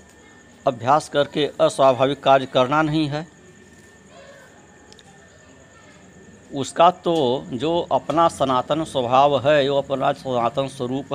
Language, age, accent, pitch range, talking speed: Hindi, 60-79, native, 120-155 Hz, 95 wpm